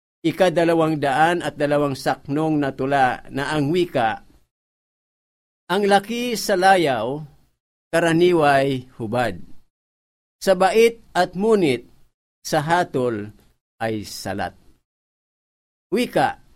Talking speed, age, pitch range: 90 wpm, 50-69, 125-180 Hz